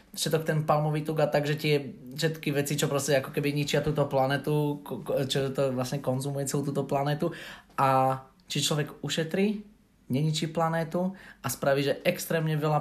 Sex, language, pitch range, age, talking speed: male, Slovak, 135-160 Hz, 20-39, 160 wpm